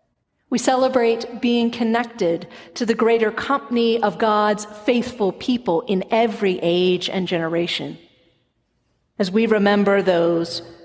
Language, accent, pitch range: English, American, 195-245 Hz